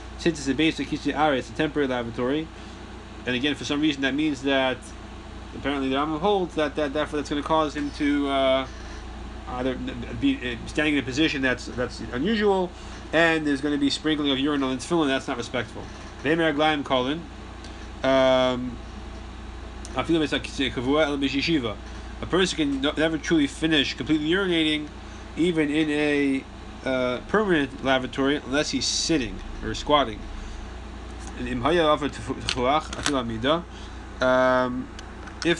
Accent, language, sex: American, English, male